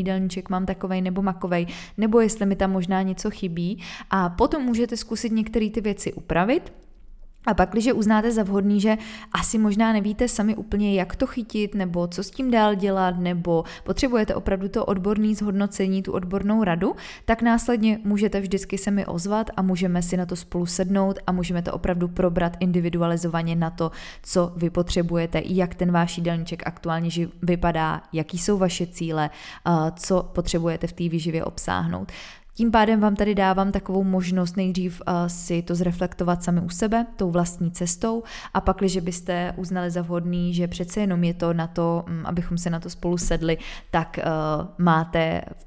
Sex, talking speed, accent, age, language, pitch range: female, 170 wpm, native, 20-39, Czech, 170-200 Hz